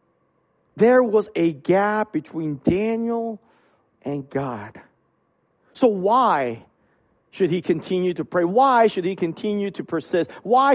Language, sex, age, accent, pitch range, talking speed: English, male, 40-59, American, 140-180 Hz, 125 wpm